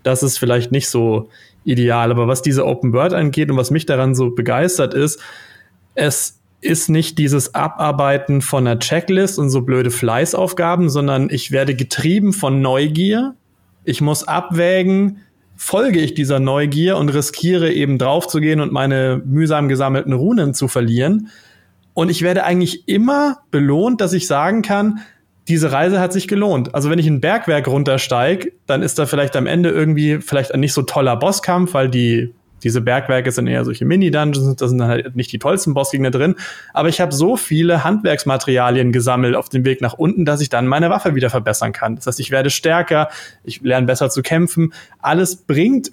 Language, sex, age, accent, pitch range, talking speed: German, male, 30-49, German, 130-170 Hz, 180 wpm